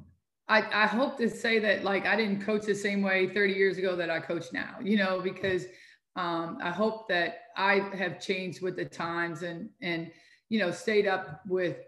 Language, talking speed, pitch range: English, 200 wpm, 175-205 Hz